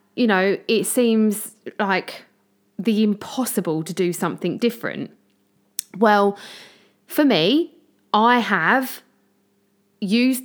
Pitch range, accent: 195-245 Hz, British